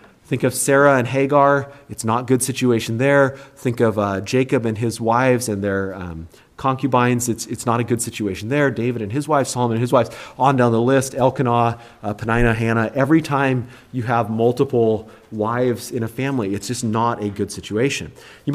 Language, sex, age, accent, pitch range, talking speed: English, male, 30-49, American, 115-145 Hz, 195 wpm